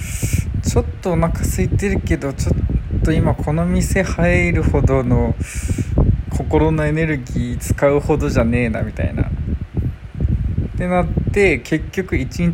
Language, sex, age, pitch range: Japanese, male, 20-39, 85-120 Hz